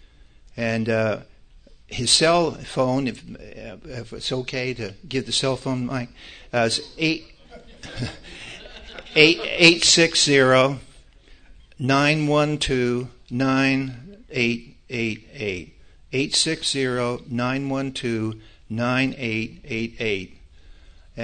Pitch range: 115-140 Hz